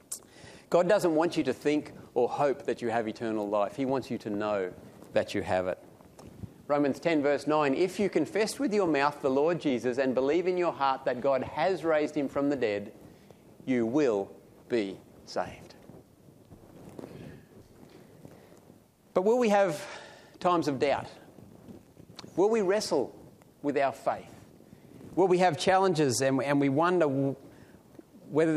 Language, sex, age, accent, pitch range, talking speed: English, male, 40-59, Australian, 130-170 Hz, 155 wpm